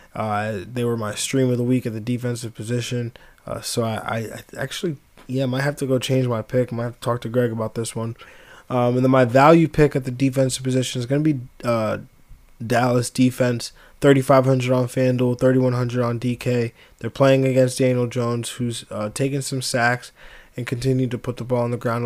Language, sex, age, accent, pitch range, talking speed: English, male, 20-39, American, 120-130 Hz, 205 wpm